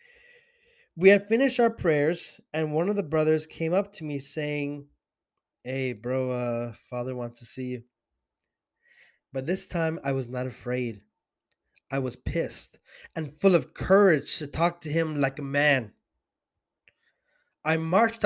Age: 20-39